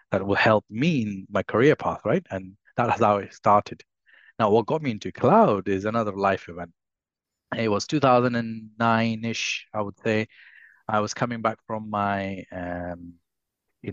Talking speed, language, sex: 170 wpm, English, male